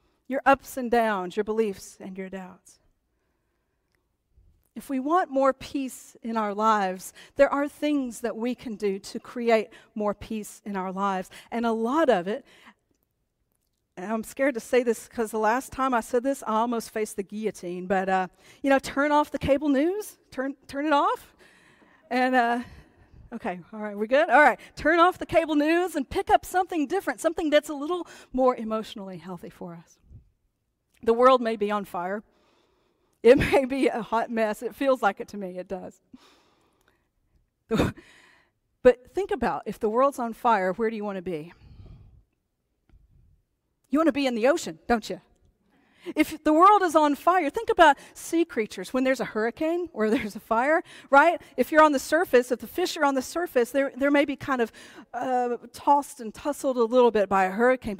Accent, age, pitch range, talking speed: American, 40-59, 215-285 Hz, 190 wpm